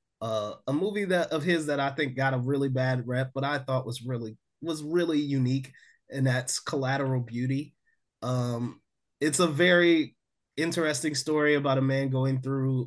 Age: 20-39